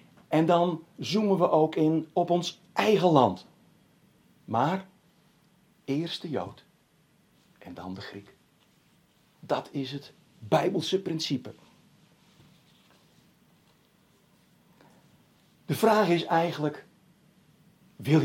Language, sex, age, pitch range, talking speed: Dutch, male, 60-79, 130-180 Hz, 90 wpm